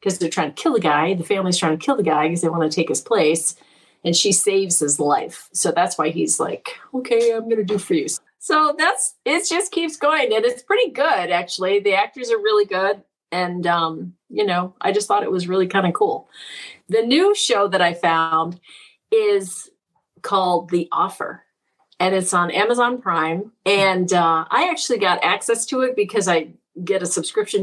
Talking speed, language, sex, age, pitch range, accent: 205 wpm, English, female, 40-59, 175-265 Hz, American